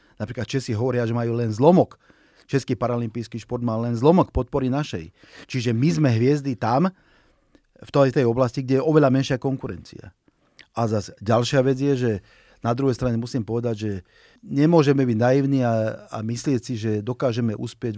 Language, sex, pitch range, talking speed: Slovak, male, 110-135 Hz, 165 wpm